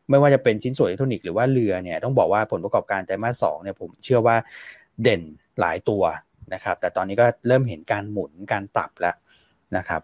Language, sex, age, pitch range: Thai, male, 20-39, 100-125 Hz